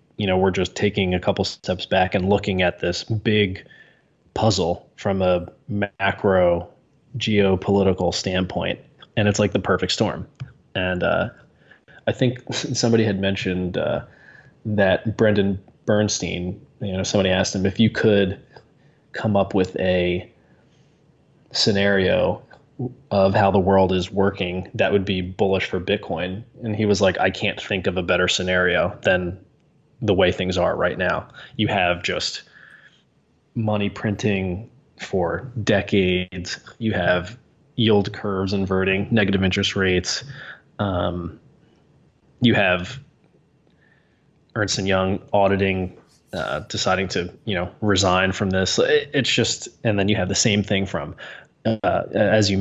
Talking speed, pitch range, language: 140 wpm, 95-110 Hz, English